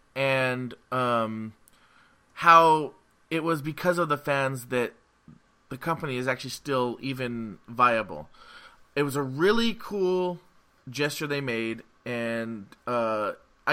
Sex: male